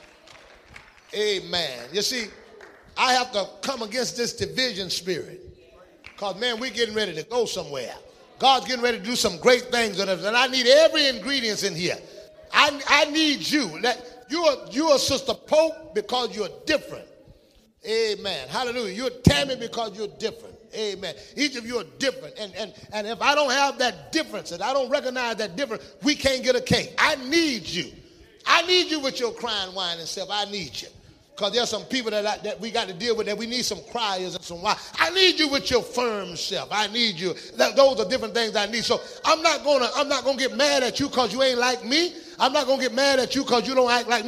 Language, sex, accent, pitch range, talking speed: English, male, American, 220-285 Hz, 215 wpm